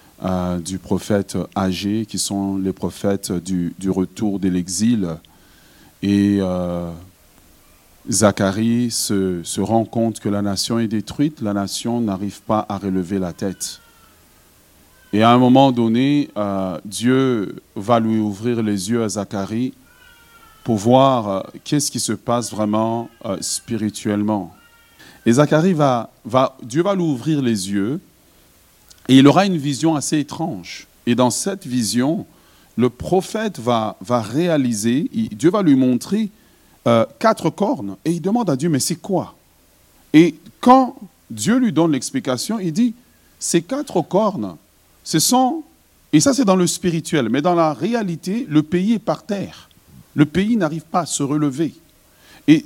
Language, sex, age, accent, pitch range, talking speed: French, male, 40-59, French, 100-165 Hz, 150 wpm